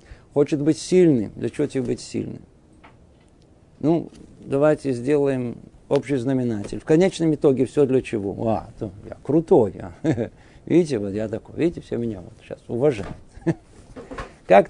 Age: 50-69